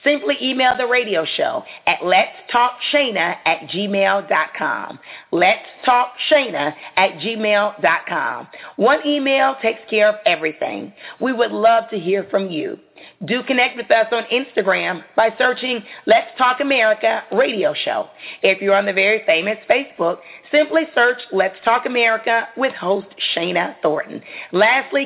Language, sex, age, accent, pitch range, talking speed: English, female, 40-59, American, 190-250 Hz, 130 wpm